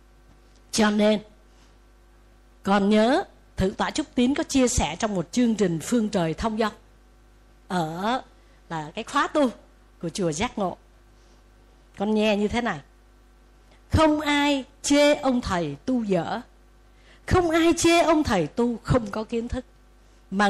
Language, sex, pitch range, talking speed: Vietnamese, female, 185-275 Hz, 150 wpm